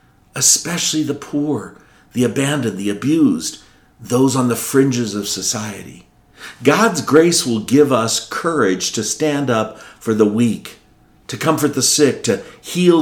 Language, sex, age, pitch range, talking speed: English, male, 50-69, 95-130 Hz, 145 wpm